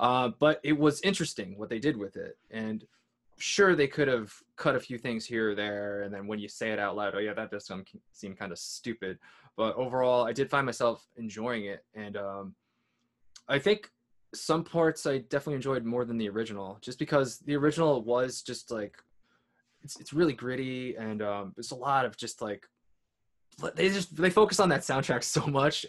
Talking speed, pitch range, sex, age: 200 wpm, 105-140 Hz, male, 20-39